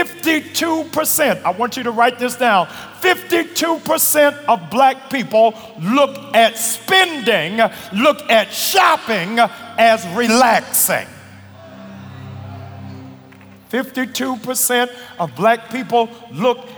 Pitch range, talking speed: 210-250 Hz, 85 wpm